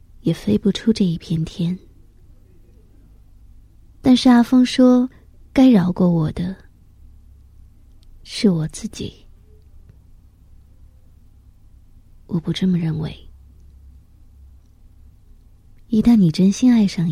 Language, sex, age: Chinese, female, 20-39